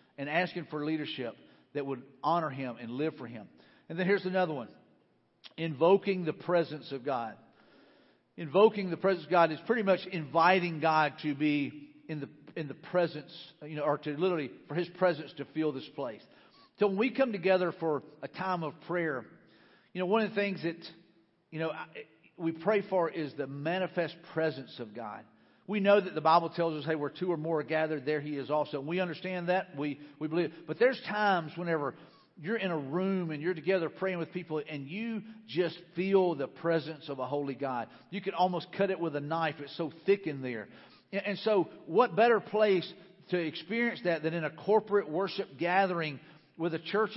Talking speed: 200 wpm